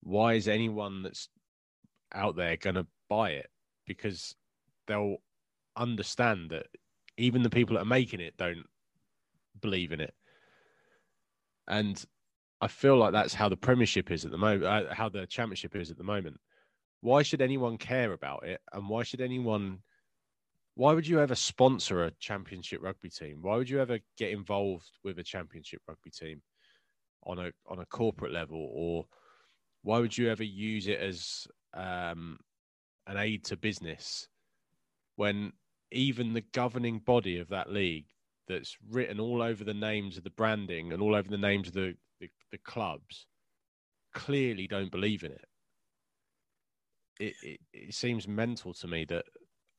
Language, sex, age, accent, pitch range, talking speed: English, male, 20-39, British, 90-115 Hz, 160 wpm